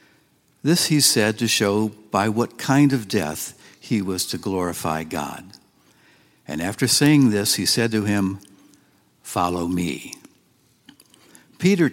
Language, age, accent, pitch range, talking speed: English, 60-79, American, 100-130 Hz, 130 wpm